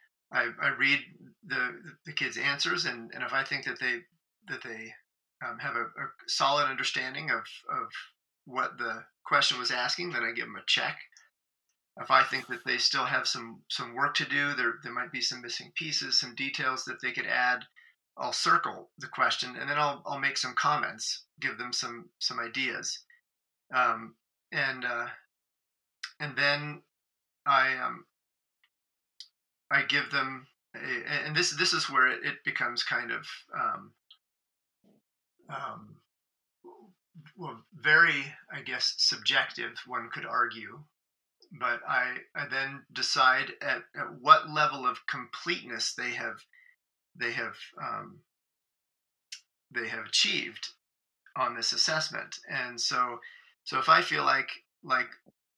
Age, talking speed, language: 30-49, 145 wpm, English